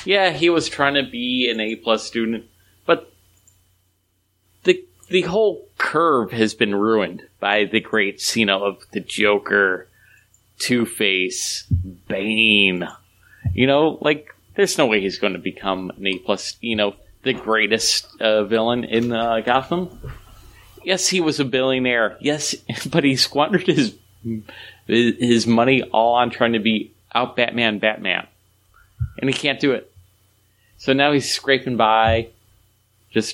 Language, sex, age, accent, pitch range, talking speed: English, male, 30-49, American, 105-140 Hz, 150 wpm